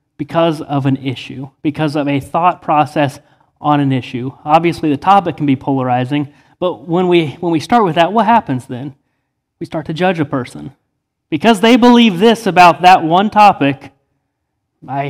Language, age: English, 30-49